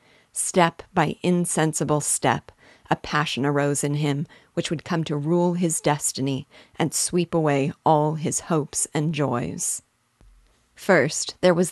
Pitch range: 150-175 Hz